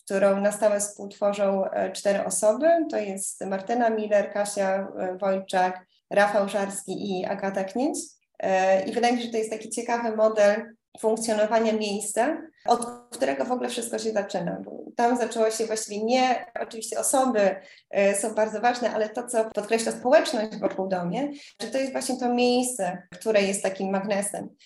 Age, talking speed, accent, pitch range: 20-39, 155 wpm, native, 190-220 Hz